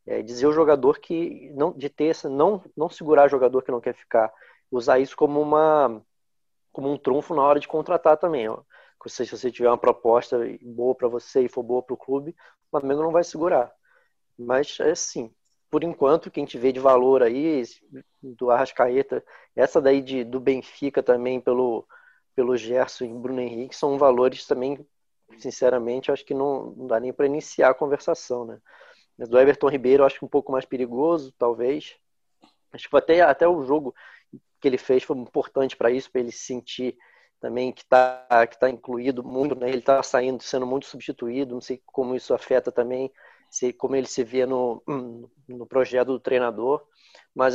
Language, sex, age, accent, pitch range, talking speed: Portuguese, male, 20-39, Brazilian, 125-145 Hz, 190 wpm